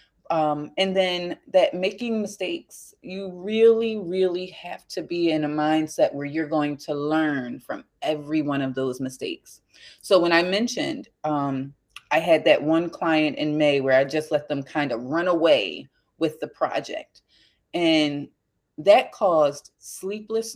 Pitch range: 145-190 Hz